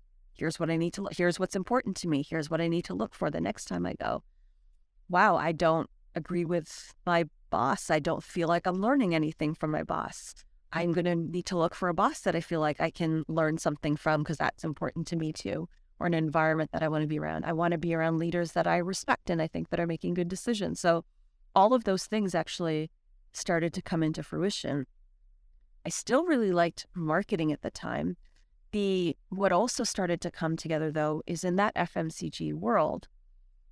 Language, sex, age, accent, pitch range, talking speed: English, female, 30-49, American, 155-180 Hz, 215 wpm